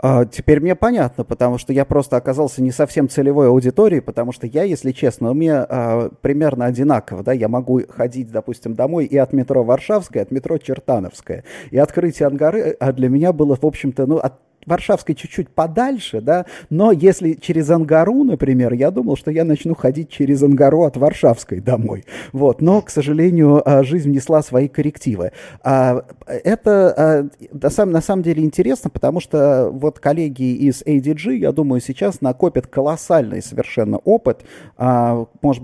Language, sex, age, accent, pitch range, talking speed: Russian, male, 30-49, native, 125-155 Hz, 155 wpm